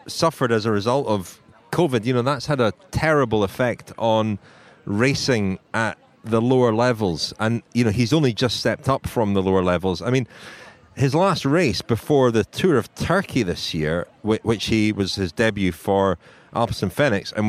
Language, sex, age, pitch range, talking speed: English, male, 30-49, 105-130 Hz, 180 wpm